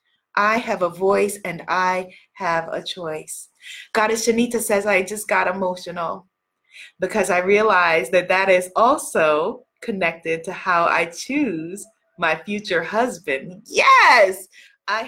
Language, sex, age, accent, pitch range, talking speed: English, female, 20-39, American, 170-220 Hz, 130 wpm